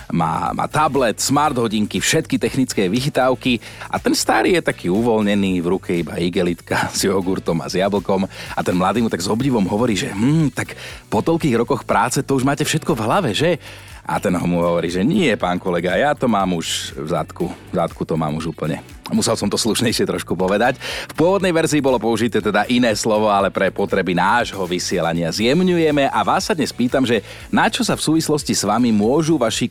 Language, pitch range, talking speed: Slovak, 100-150 Hz, 205 wpm